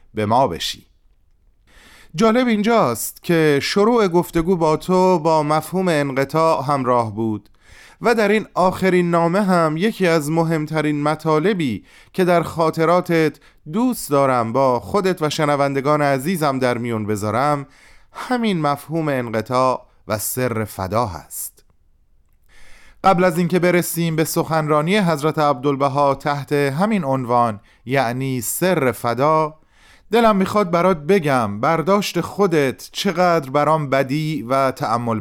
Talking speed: 120 wpm